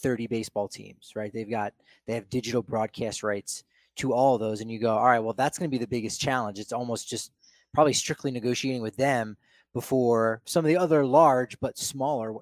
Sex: male